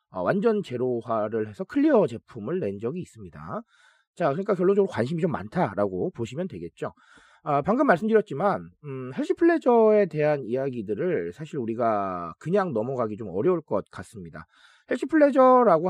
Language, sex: Korean, male